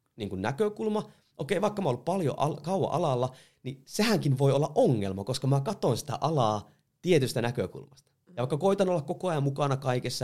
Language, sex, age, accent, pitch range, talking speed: Finnish, male, 30-49, native, 120-155 Hz, 175 wpm